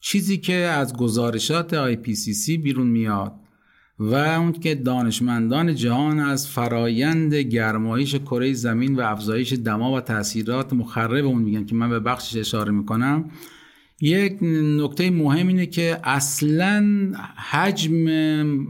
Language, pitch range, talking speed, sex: Persian, 120-155 Hz, 120 wpm, male